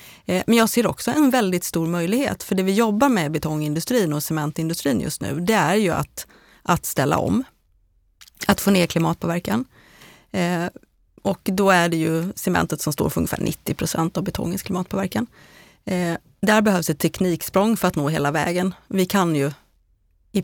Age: 30-49